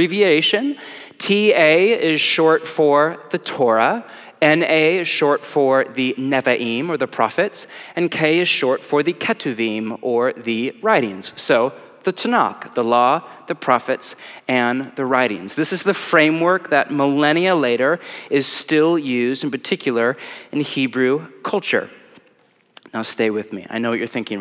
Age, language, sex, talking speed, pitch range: 30-49, English, male, 145 wpm, 130-175 Hz